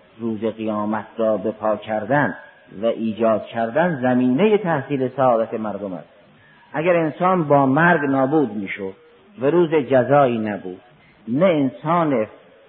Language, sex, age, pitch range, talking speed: Persian, male, 50-69, 115-155 Hz, 125 wpm